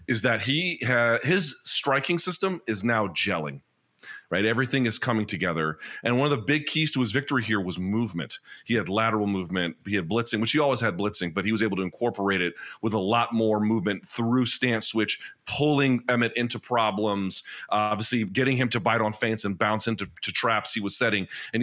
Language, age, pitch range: English, 30-49, 100-125 Hz